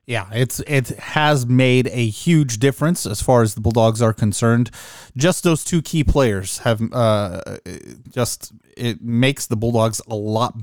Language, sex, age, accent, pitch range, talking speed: English, male, 30-49, American, 105-135 Hz, 165 wpm